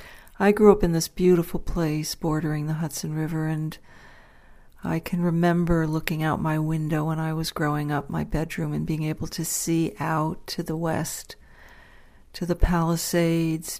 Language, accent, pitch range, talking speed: English, American, 155-175 Hz, 165 wpm